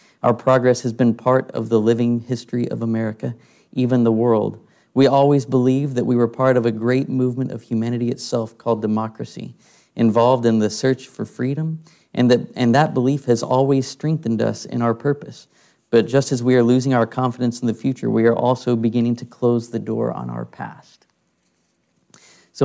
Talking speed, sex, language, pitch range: 185 wpm, male, English, 115-130 Hz